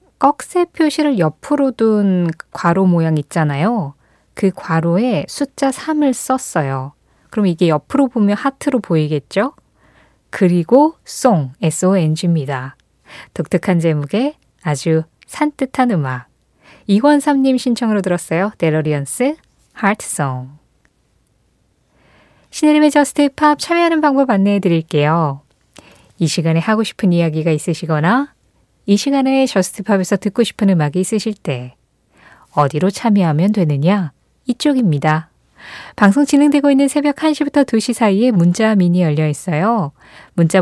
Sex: female